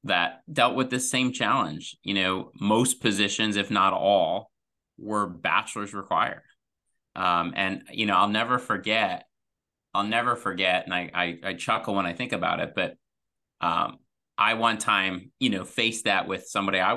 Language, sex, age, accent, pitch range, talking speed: English, male, 30-49, American, 95-110 Hz, 170 wpm